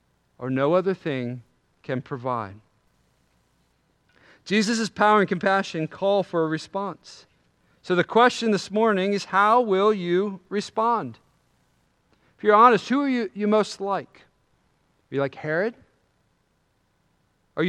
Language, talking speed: English, 130 wpm